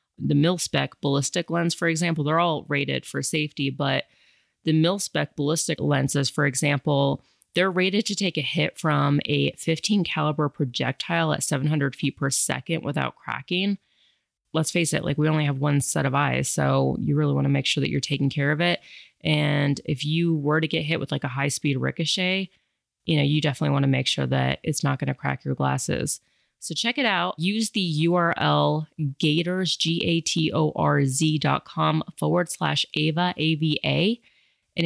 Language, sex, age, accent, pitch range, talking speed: English, female, 30-49, American, 145-170 Hz, 175 wpm